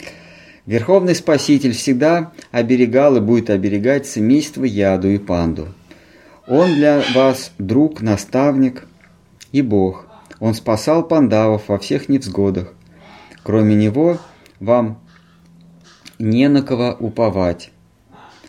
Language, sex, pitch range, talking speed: Russian, male, 95-130 Hz, 100 wpm